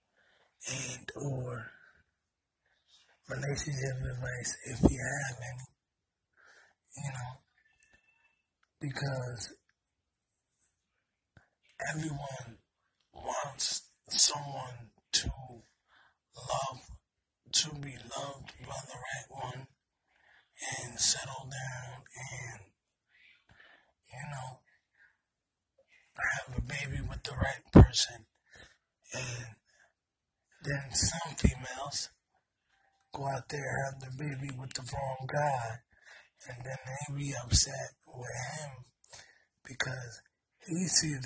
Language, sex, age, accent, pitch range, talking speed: English, male, 30-49, American, 125-145 Hz, 90 wpm